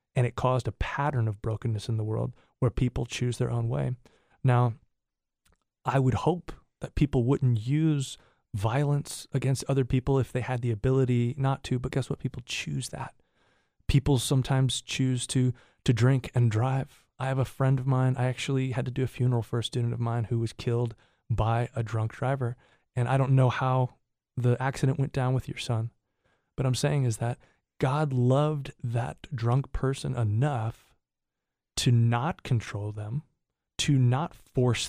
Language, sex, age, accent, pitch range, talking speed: English, male, 30-49, American, 115-135 Hz, 180 wpm